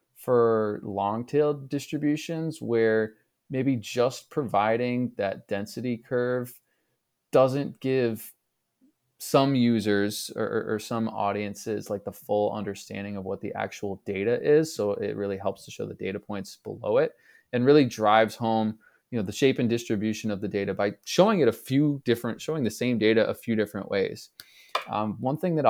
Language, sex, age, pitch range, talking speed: English, male, 20-39, 105-125 Hz, 165 wpm